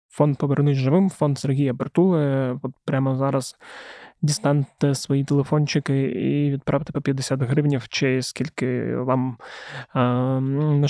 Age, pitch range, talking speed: 20-39, 135-155 Hz, 120 wpm